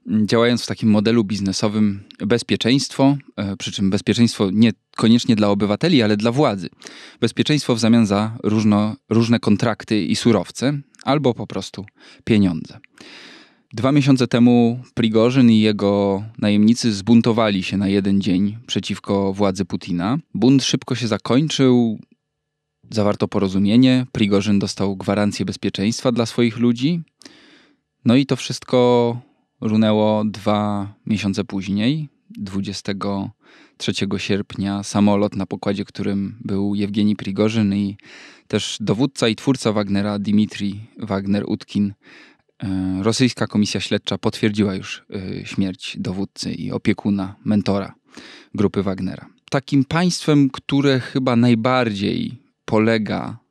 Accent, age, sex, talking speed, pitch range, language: native, 20-39, male, 110 wpm, 100-120 Hz, Polish